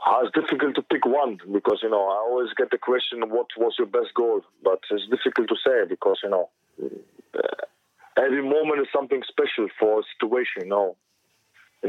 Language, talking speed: English, 190 wpm